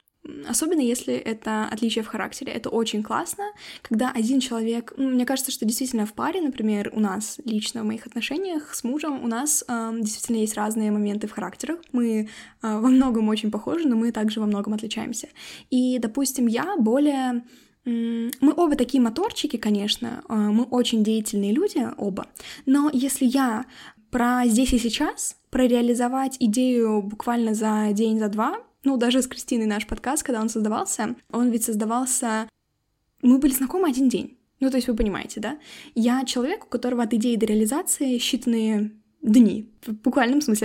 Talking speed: 170 wpm